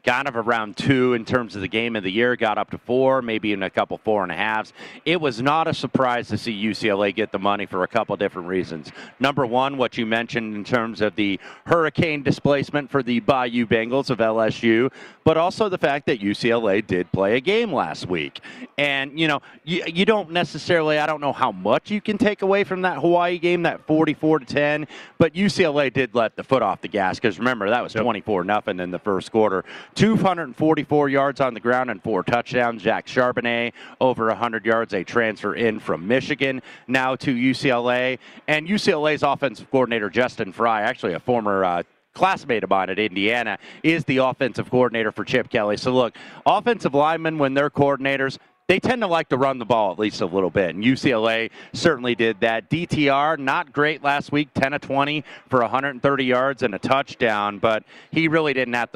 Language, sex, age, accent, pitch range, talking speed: English, male, 30-49, American, 110-150 Hz, 200 wpm